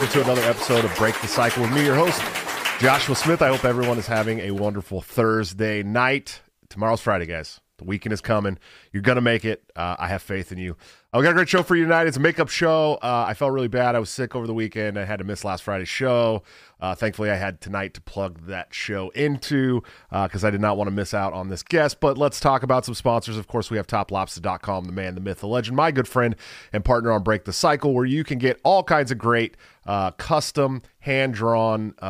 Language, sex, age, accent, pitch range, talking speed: English, male, 30-49, American, 95-125 Hz, 245 wpm